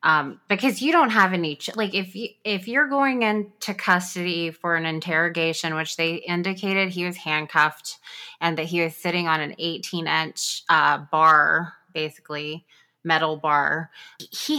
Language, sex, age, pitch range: English, female, 20-39, 165-210 Hz